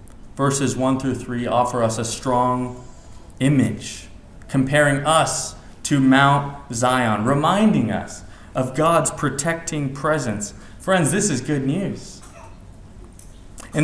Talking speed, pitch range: 110 wpm, 100-140 Hz